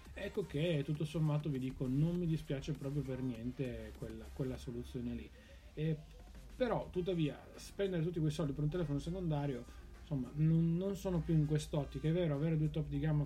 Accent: native